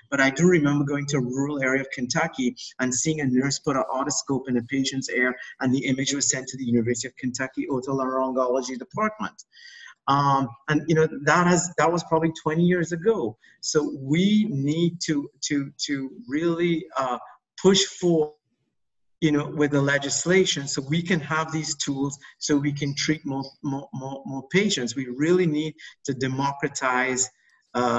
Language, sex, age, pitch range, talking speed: English, male, 50-69, 135-190 Hz, 175 wpm